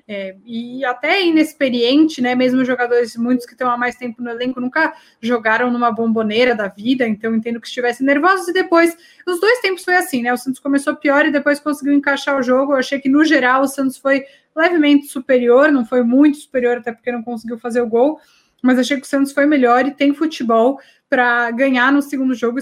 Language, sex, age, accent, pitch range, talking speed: Portuguese, female, 20-39, Brazilian, 235-280 Hz, 215 wpm